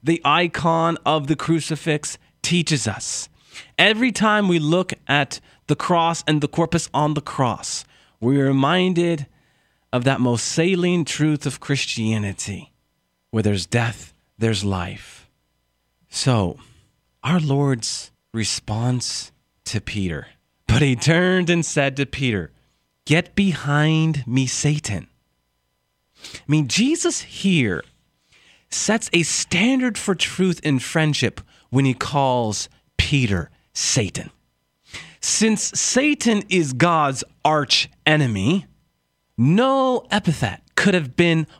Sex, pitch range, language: male, 125-175 Hz, English